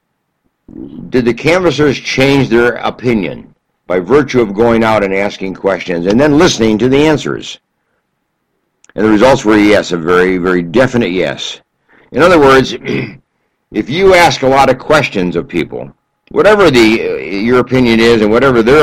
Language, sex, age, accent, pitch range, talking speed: English, male, 60-79, American, 105-135 Hz, 165 wpm